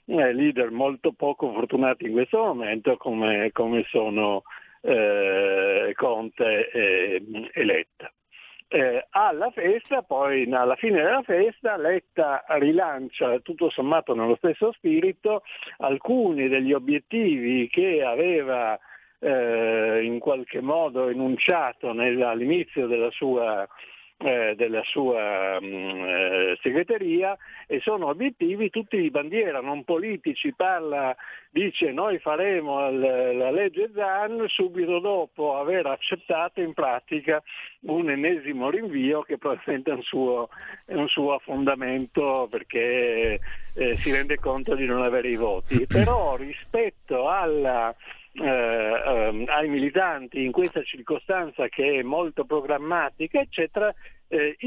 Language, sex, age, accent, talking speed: Italian, male, 60-79, native, 115 wpm